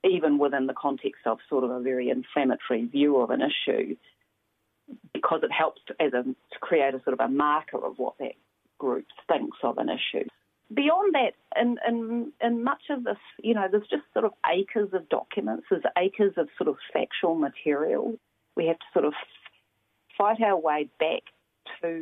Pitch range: 145-235 Hz